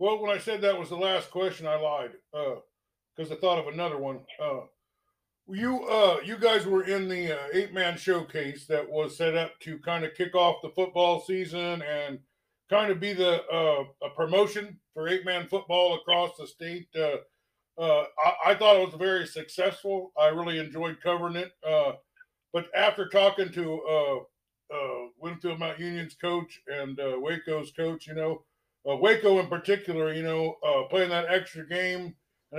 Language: English